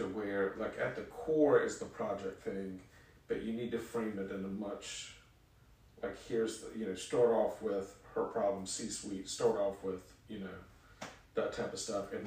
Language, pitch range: English, 100-125 Hz